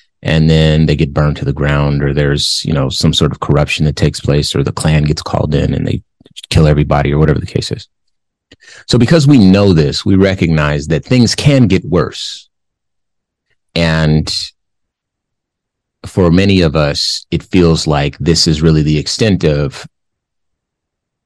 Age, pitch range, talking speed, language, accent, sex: 30-49, 75-95 Hz, 170 wpm, English, American, male